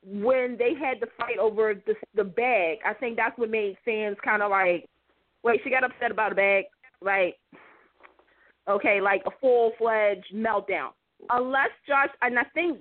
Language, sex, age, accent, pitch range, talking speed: English, female, 30-49, American, 205-260 Hz, 180 wpm